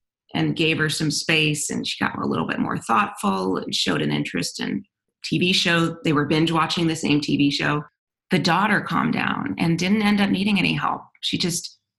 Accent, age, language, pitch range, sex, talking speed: American, 30-49, English, 145-170 Hz, female, 205 wpm